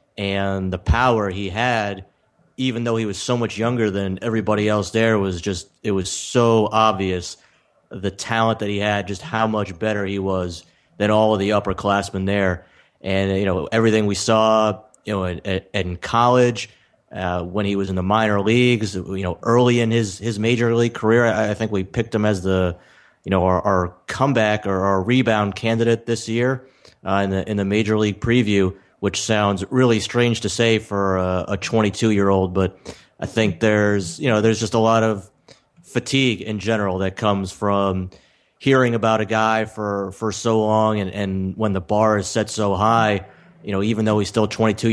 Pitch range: 95-115 Hz